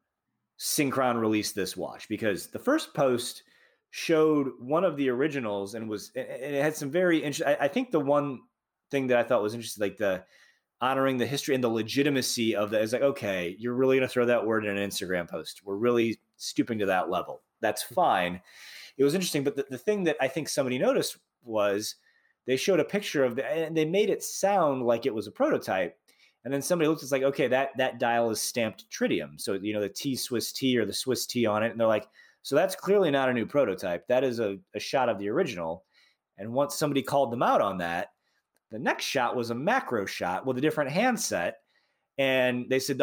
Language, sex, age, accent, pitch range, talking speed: English, male, 30-49, American, 115-155 Hz, 220 wpm